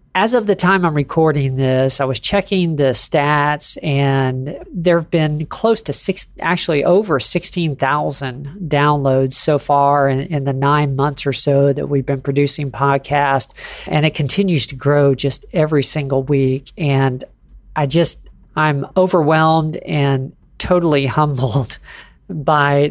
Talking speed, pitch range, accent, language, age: 145 wpm, 140-165 Hz, American, English, 40-59